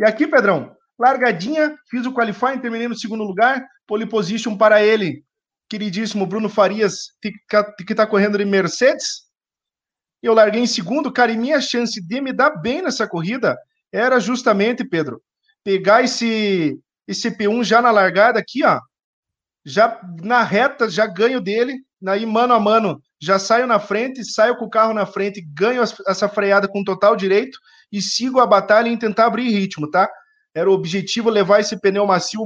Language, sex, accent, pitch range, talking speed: Portuguese, male, Brazilian, 195-235 Hz, 170 wpm